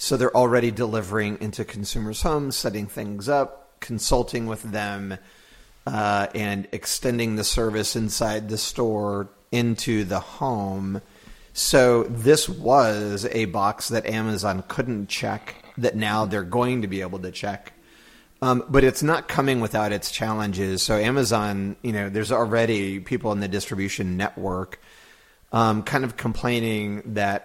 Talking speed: 145 wpm